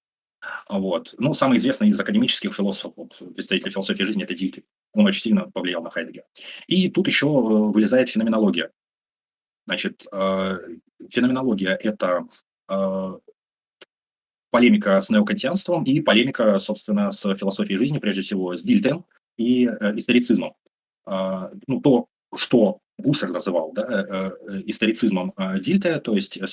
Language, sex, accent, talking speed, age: Russian, male, native, 115 wpm, 30-49